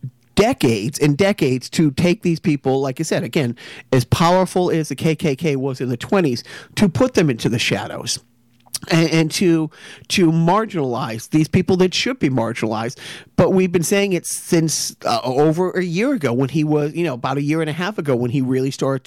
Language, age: English, 40-59